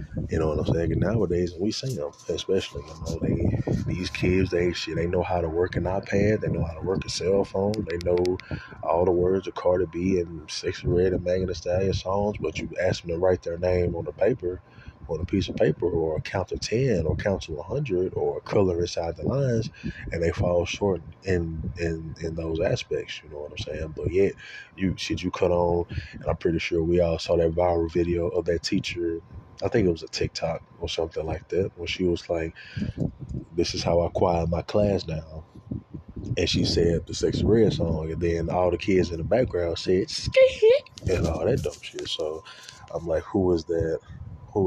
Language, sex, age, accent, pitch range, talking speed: English, male, 20-39, American, 85-95 Hz, 215 wpm